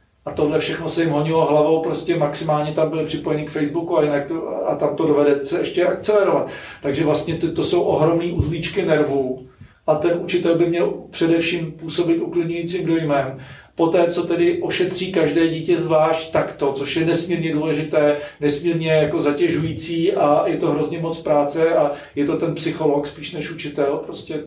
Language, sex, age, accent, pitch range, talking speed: Czech, male, 40-59, native, 150-165 Hz, 175 wpm